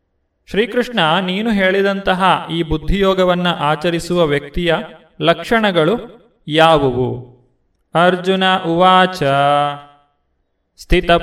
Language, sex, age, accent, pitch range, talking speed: Kannada, male, 30-49, native, 145-190 Hz, 65 wpm